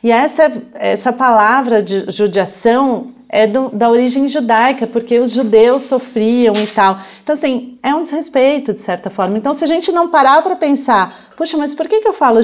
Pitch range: 215-265 Hz